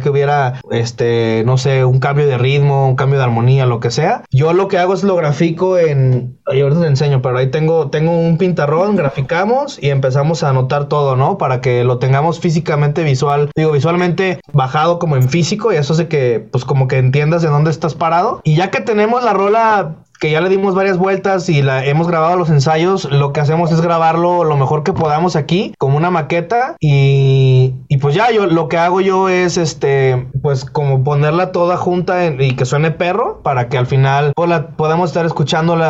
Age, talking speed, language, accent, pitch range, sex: 20-39, 205 wpm, Spanish, Mexican, 140-170 Hz, male